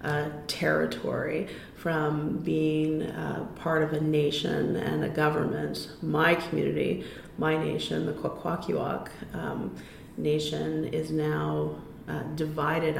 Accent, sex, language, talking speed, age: American, female, English, 105 wpm, 30-49